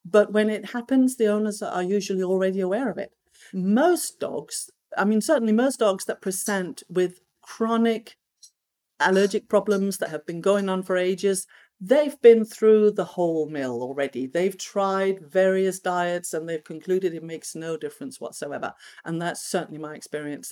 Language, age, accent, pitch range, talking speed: English, 50-69, British, 170-220 Hz, 165 wpm